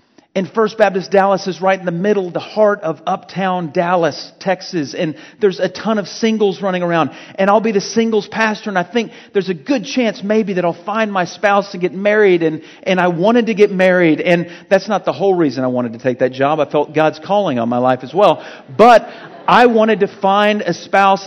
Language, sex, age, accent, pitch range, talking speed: English, male, 40-59, American, 165-200 Hz, 225 wpm